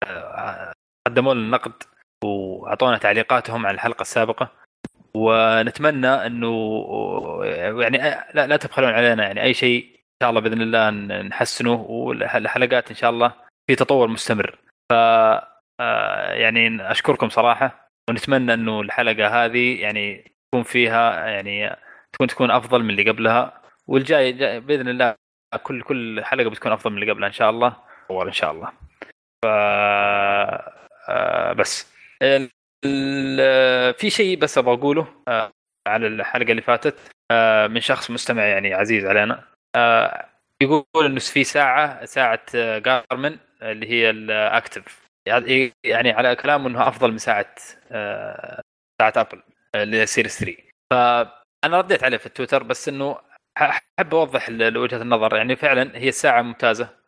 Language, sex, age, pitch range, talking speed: Arabic, male, 20-39, 110-135 Hz, 125 wpm